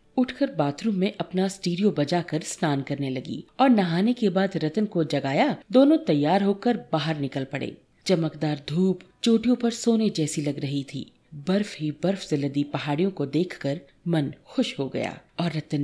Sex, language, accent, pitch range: female, Hindi, native, 150-220 Hz